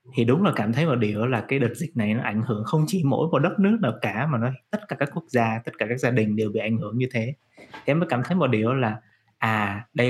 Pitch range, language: 115-150 Hz, Vietnamese